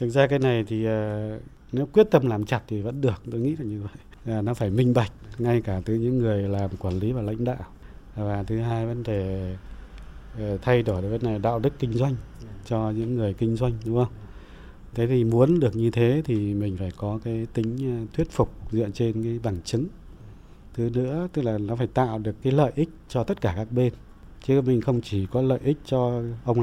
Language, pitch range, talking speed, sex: Vietnamese, 110-130 Hz, 220 wpm, male